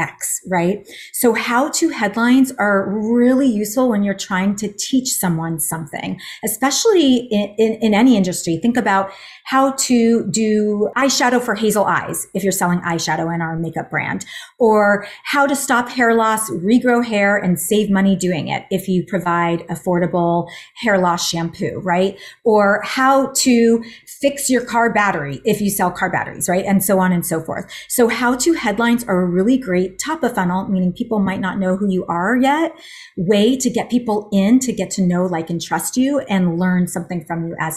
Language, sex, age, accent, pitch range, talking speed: English, female, 30-49, American, 180-240 Hz, 180 wpm